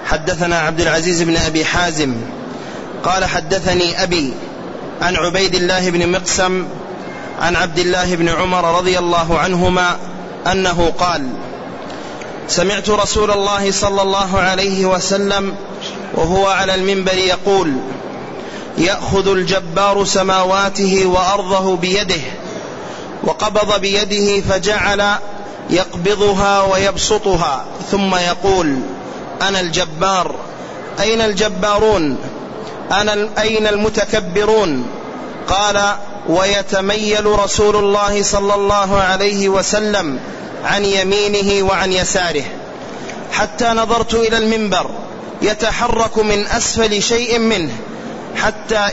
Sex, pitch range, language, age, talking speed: male, 185-205 Hz, Arabic, 30-49, 90 wpm